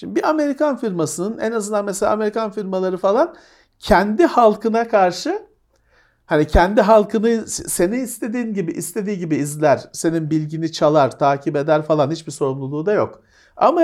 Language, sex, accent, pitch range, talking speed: Turkish, male, native, 160-235 Hz, 145 wpm